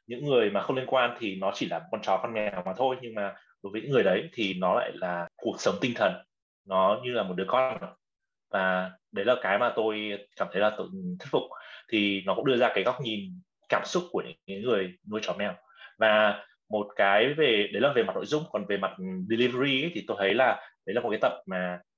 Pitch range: 95-130 Hz